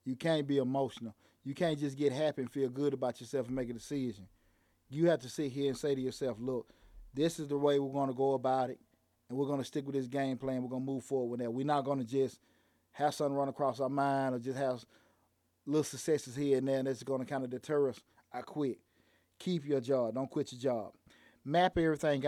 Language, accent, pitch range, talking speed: English, American, 125-150 Hz, 250 wpm